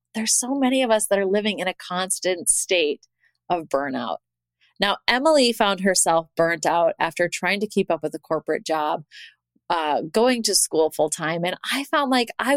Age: 20-39